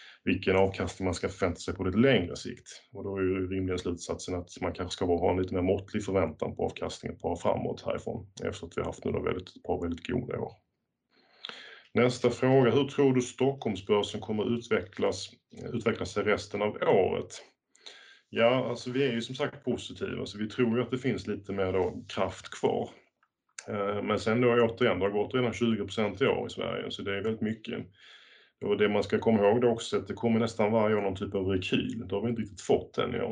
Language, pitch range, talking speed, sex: Swedish, 95-120 Hz, 220 wpm, male